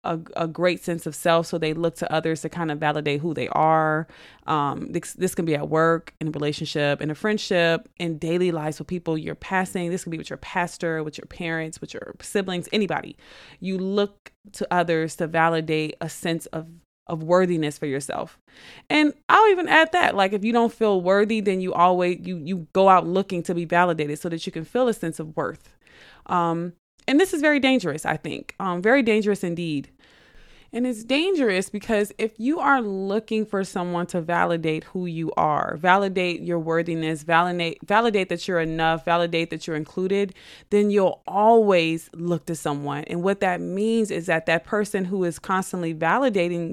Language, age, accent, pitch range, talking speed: English, 20-39, American, 165-200 Hz, 195 wpm